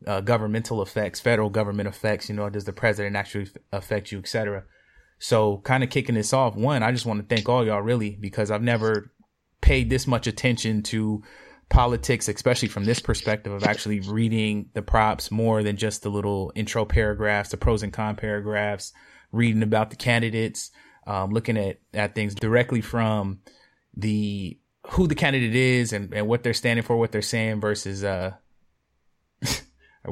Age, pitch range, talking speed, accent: 20-39, 100-120 Hz, 180 wpm, American